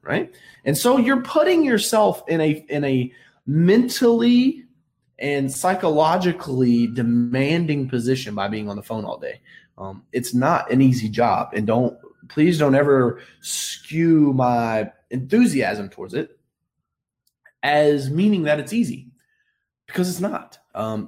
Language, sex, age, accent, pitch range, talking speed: English, male, 20-39, American, 125-200 Hz, 135 wpm